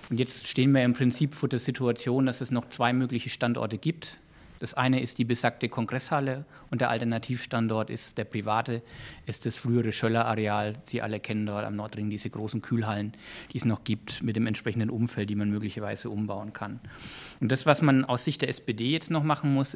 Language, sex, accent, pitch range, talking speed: German, male, German, 115-135 Hz, 200 wpm